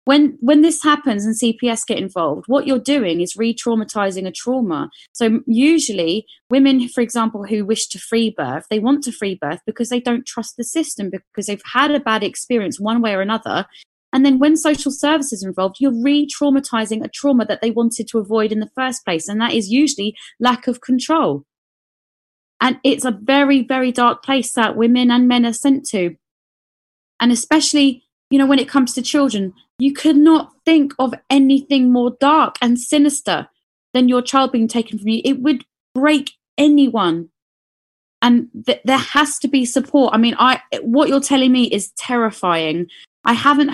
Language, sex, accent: English, female, British